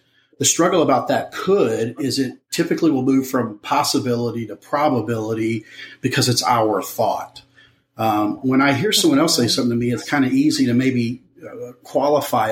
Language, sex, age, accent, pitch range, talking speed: English, male, 40-59, American, 120-160 Hz, 175 wpm